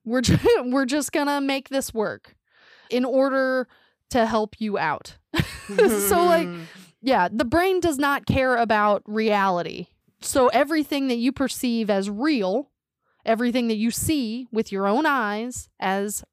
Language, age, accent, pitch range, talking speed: English, 20-39, American, 225-300 Hz, 145 wpm